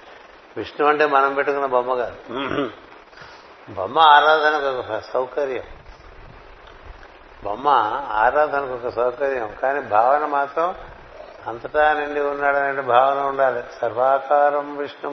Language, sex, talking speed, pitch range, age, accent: Telugu, male, 95 wpm, 130-145 Hz, 60-79, native